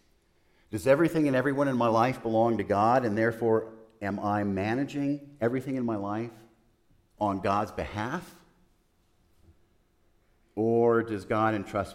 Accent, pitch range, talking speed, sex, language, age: American, 90-115 Hz, 130 wpm, male, English, 50-69